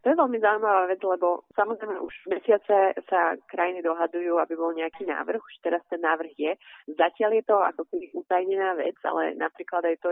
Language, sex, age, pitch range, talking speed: Slovak, female, 30-49, 165-195 Hz, 190 wpm